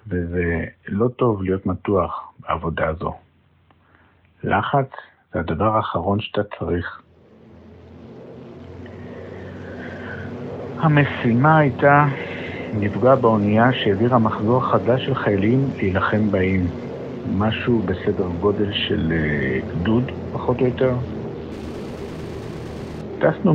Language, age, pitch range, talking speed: Hebrew, 60-79, 90-120 Hz, 85 wpm